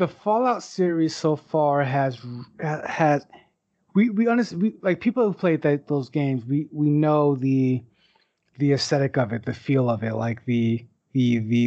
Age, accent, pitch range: 30-49, American, 135-165 Hz